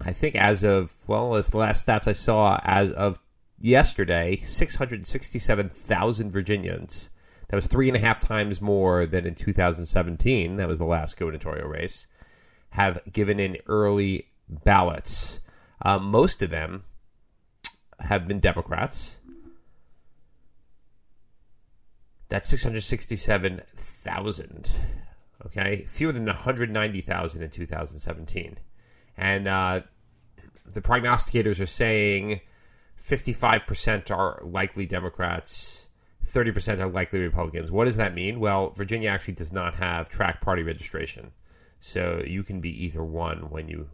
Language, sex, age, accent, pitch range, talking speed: English, male, 30-49, American, 85-105 Hz, 120 wpm